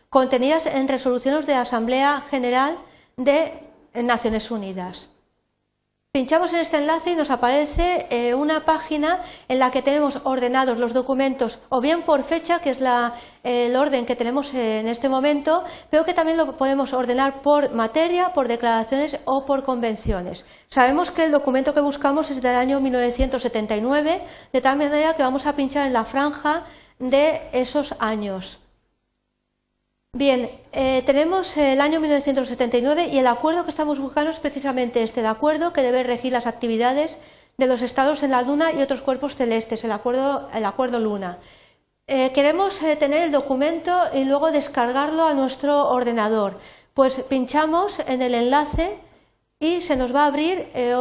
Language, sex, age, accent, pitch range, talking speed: Spanish, female, 40-59, Spanish, 250-300 Hz, 160 wpm